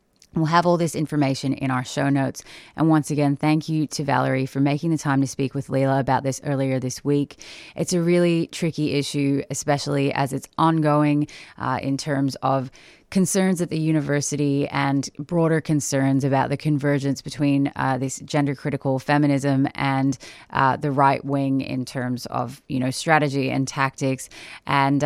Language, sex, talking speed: English, female, 170 wpm